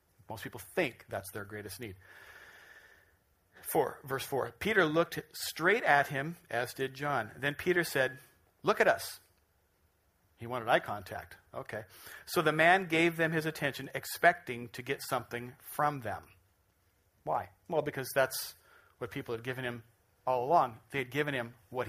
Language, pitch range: English, 105-145 Hz